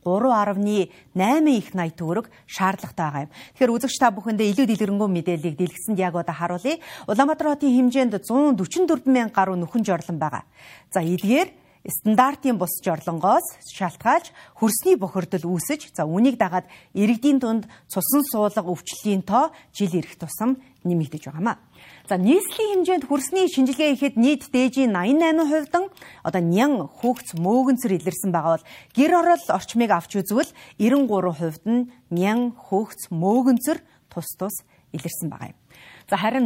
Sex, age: female, 40-59